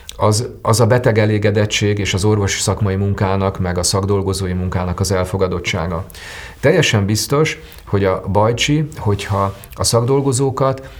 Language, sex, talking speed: Hungarian, male, 130 wpm